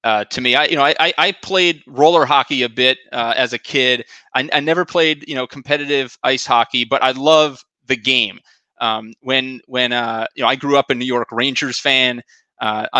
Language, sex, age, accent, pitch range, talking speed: English, male, 30-49, American, 125-160 Hz, 210 wpm